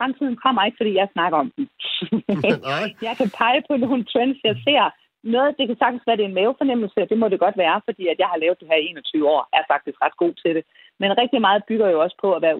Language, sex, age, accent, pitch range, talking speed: Danish, female, 40-59, native, 160-215 Hz, 260 wpm